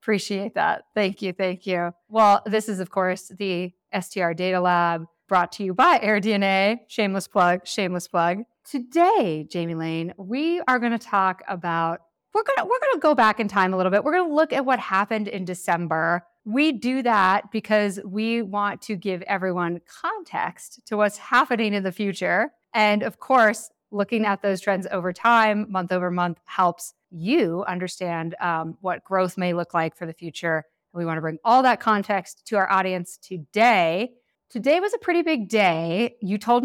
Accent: American